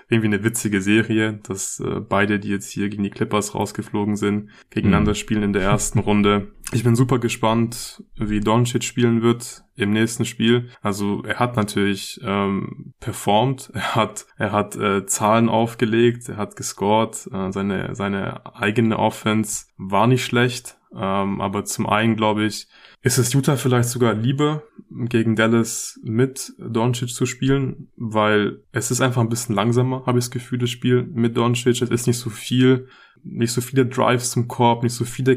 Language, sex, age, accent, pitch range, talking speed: German, male, 20-39, German, 105-125 Hz, 175 wpm